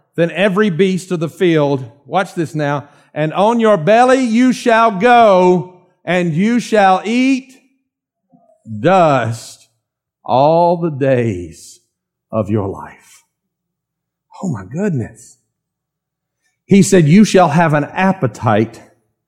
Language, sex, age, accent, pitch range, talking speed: English, male, 50-69, American, 120-180 Hz, 115 wpm